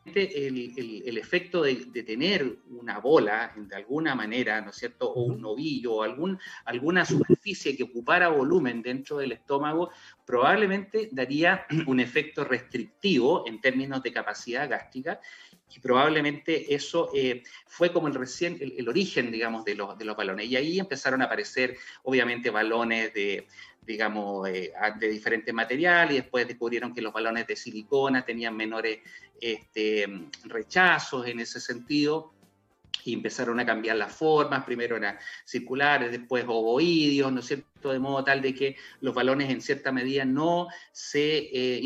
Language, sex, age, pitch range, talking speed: Spanish, male, 40-59, 115-150 Hz, 160 wpm